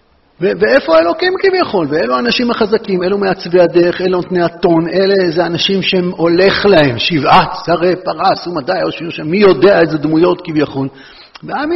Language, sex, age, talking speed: Hebrew, male, 50-69, 160 wpm